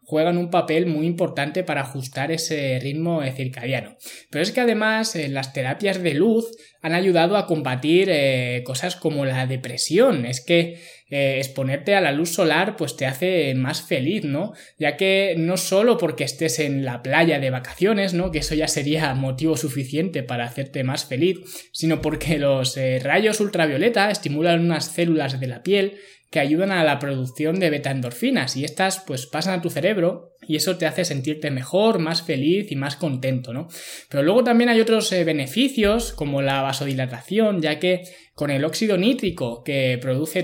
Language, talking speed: Spanish, 180 wpm